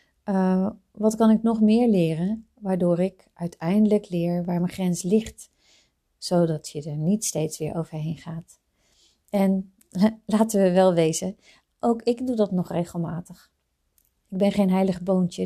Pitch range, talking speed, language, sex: 170-205 Hz, 150 wpm, Dutch, female